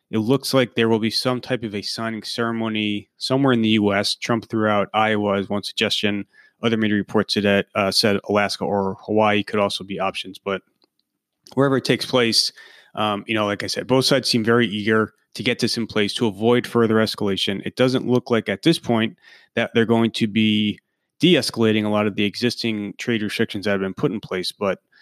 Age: 30-49